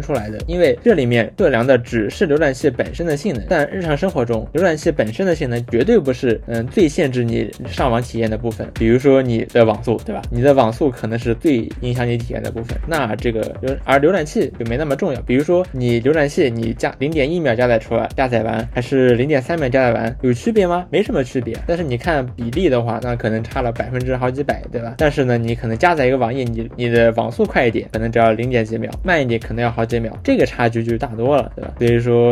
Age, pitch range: 20-39, 115-145 Hz